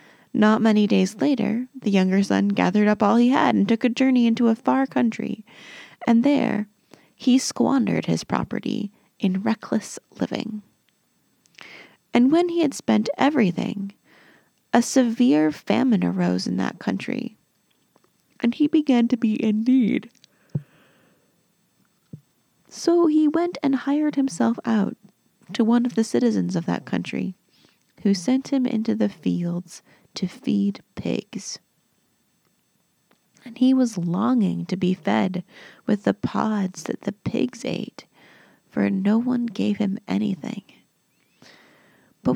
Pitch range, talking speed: 195-260 Hz, 135 wpm